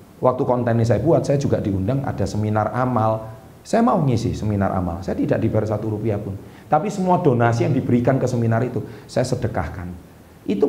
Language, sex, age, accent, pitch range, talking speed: Indonesian, male, 40-59, native, 105-145 Hz, 185 wpm